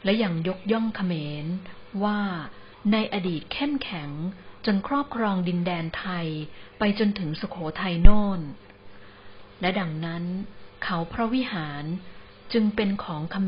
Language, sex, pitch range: Thai, female, 160-205 Hz